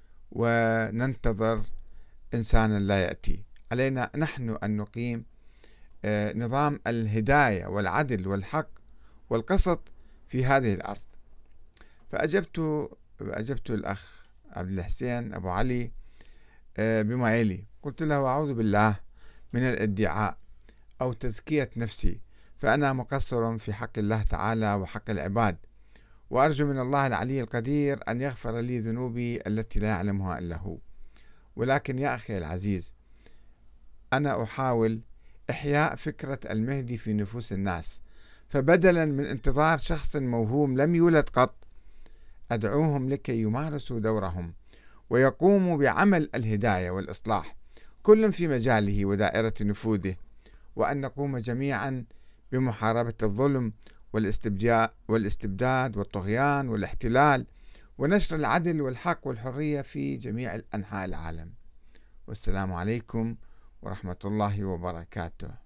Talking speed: 100 wpm